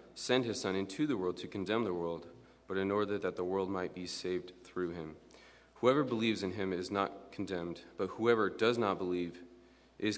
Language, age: English, 30-49